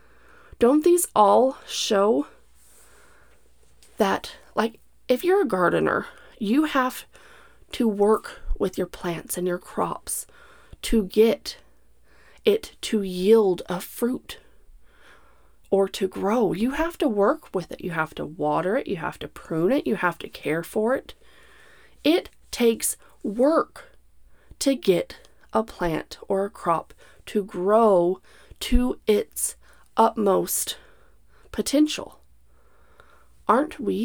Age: 30-49